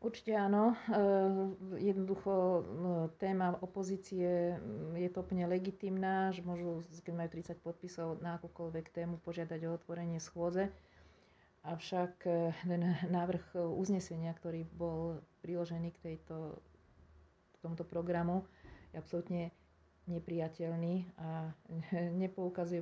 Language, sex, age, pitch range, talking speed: Slovak, female, 40-59, 165-180 Hz, 115 wpm